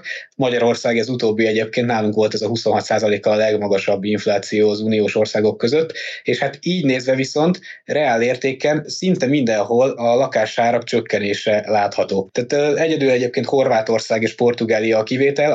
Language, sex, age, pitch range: Hungarian, male, 20-39, 115-135 Hz